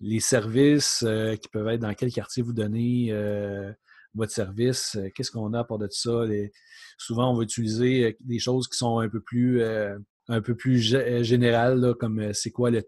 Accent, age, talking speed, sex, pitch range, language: Canadian, 40-59, 220 wpm, male, 110-130 Hz, French